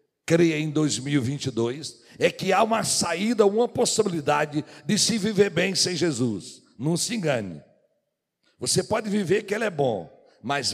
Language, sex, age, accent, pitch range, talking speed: Portuguese, male, 60-79, Brazilian, 120-190 Hz, 150 wpm